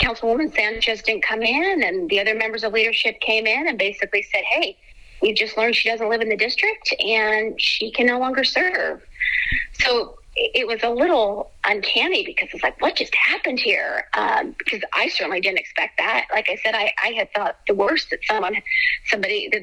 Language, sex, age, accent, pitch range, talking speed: English, female, 30-49, American, 210-285 Hz, 200 wpm